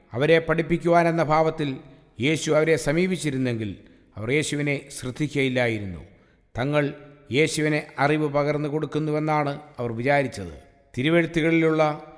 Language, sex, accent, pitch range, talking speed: English, male, Indian, 125-155 Hz, 145 wpm